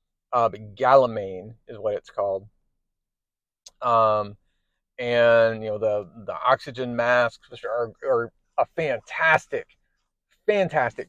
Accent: American